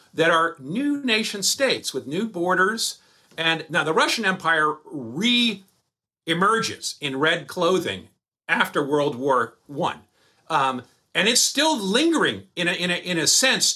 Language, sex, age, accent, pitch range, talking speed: English, male, 50-69, American, 130-200 Hz, 145 wpm